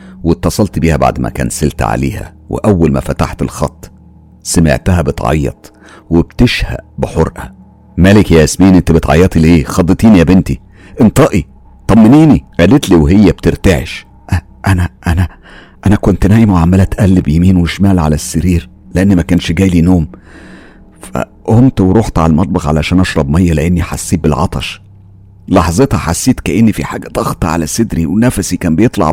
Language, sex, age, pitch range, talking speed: Arabic, male, 50-69, 80-95 Hz, 135 wpm